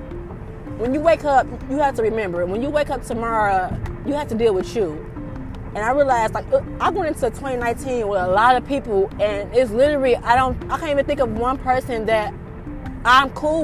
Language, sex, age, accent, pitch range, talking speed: English, female, 20-39, American, 195-260 Hz, 205 wpm